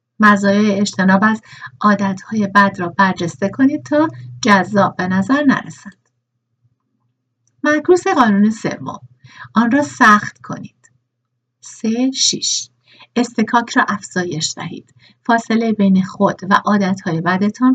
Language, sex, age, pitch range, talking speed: Persian, female, 50-69, 180-235 Hz, 115 wpm